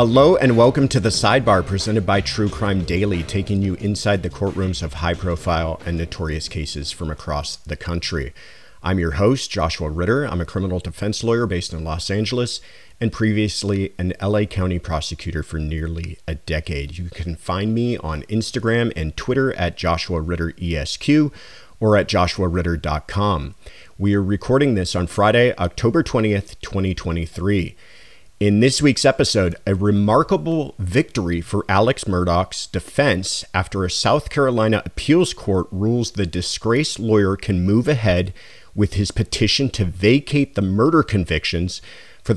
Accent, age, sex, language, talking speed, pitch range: American, 40-59, male, English, 145 wpm, 85-110 Hz